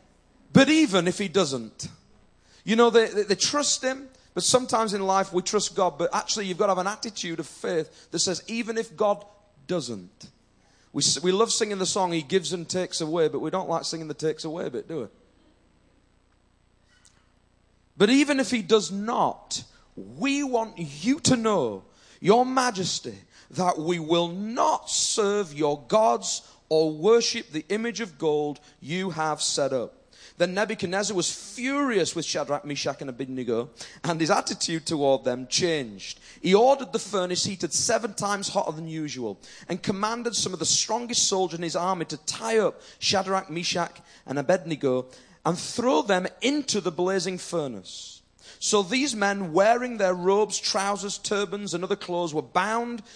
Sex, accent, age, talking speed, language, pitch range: male, British, 30-49, 170 wpm, English, 160-220 Hz